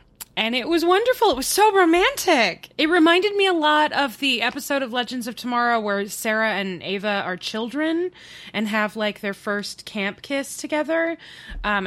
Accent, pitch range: American, 185-255 Hz